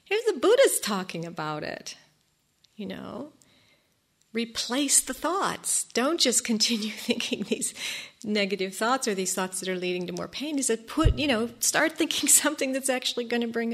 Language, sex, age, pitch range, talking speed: English, female, 50-69, 185-245 Hz, 175 wpm